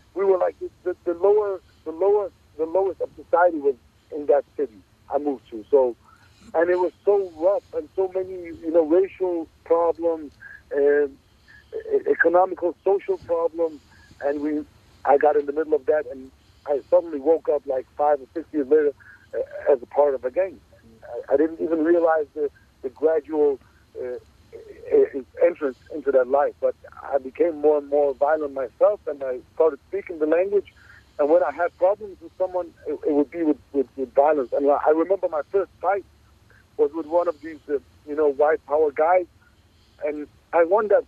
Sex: male